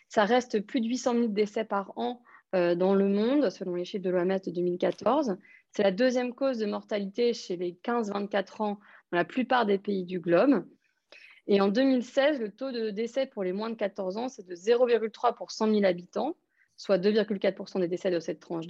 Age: 30-49